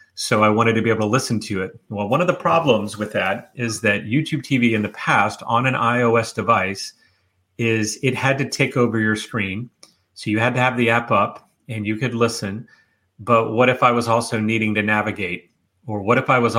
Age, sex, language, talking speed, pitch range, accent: 30-49, male, English, 225 wpm, 105-120 Hz, American